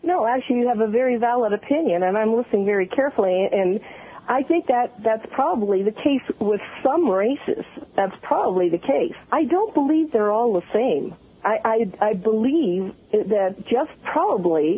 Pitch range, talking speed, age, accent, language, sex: 205-275 Hz, 170 wpm, 50-69, American, English, female